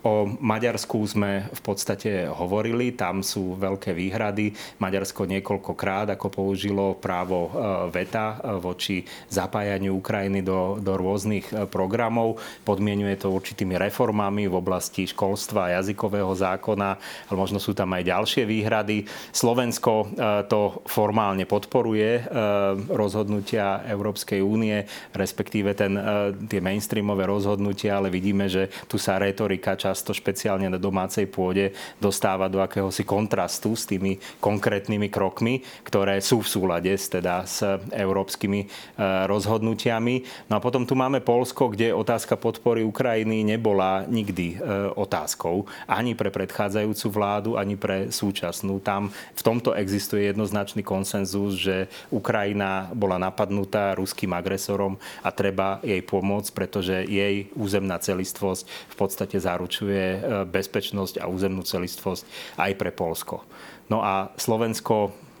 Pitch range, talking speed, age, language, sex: 95-105 Hz, 120 wpm, 30-49, Slovak, male